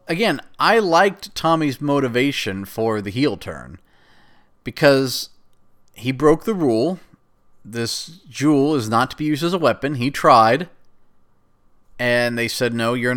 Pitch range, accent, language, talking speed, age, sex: 110-150 Hz, American, English, 140 wpm, 30-49, male